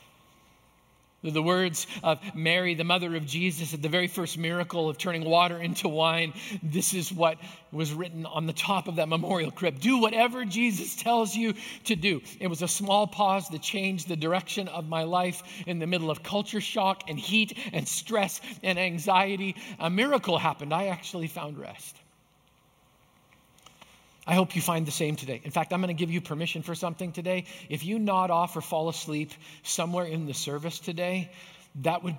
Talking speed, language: 185 wpm, English